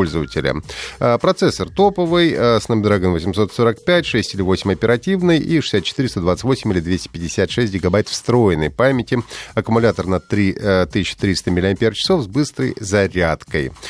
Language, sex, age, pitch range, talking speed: Russian, male, 30-49, 95-140 Hz, 100 wpm